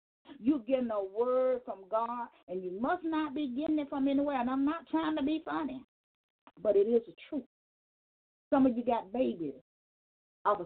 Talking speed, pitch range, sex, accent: 185 wpm, 210-280 Hz, female, American